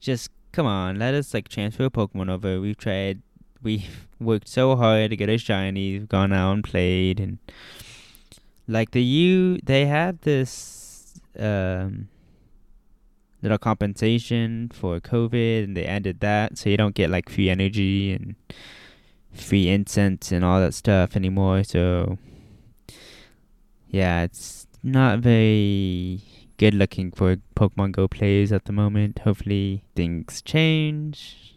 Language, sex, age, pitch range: English, male, 10-29, 95-115 Hz